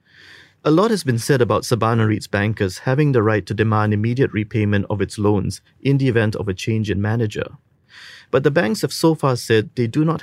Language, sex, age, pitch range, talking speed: English, male, 30-49, 105-135 Hz, 215 wpm